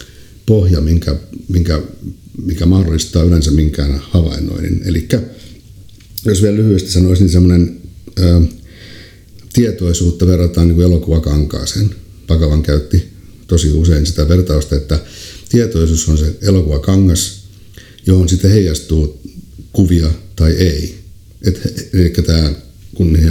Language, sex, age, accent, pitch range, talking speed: Finnish, male, 60-79, native, 80-95 Hz, 110 wpm